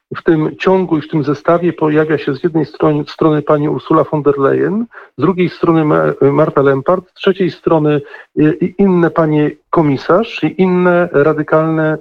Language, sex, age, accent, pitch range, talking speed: Polish, male, 40-59, native, 145-190 Hz, 160 wpm